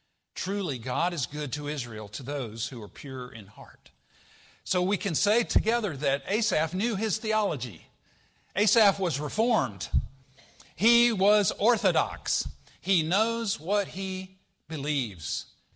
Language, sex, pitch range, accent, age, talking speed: English, male, 140-205 Hz, American, 50-69, 130 wpm